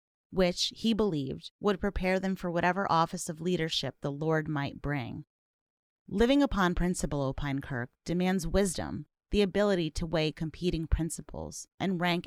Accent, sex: American, female